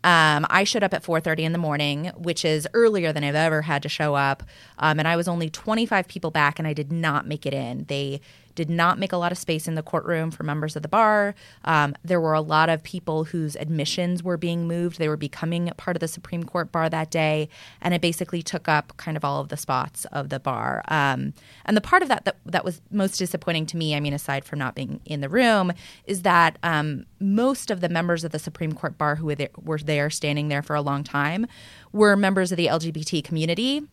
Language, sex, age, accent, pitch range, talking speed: English, female, 20-39, American, 145-175 Hz, 245 wpm